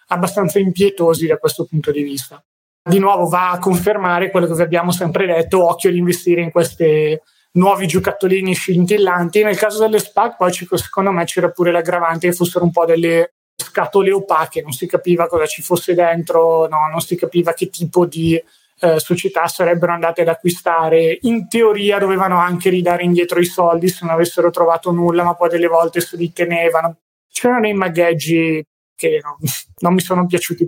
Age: 30-49